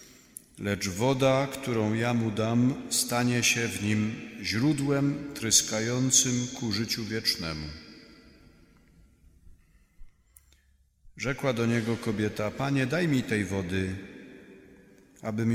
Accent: native